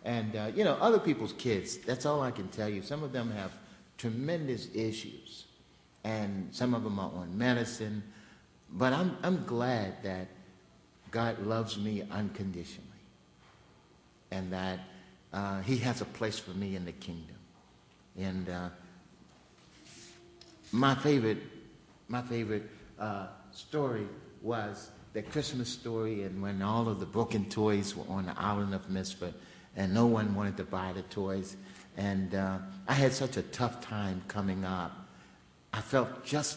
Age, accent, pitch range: 60-79, American, 95-115 Hz